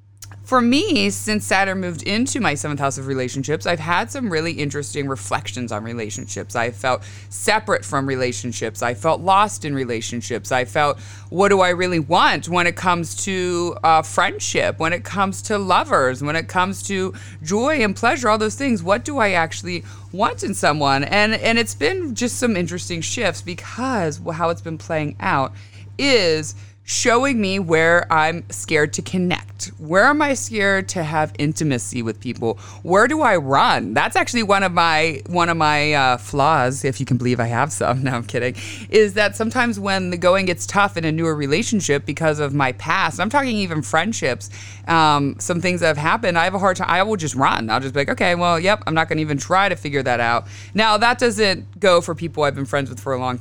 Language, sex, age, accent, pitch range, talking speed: English, female, 20-39, American, 125-185 Hz, 205 wpm